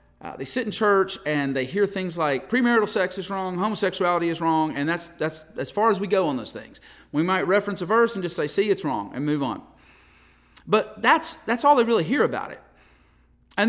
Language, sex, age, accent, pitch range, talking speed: English, male, 40-59, American, 170-235 Hz, 230 wpm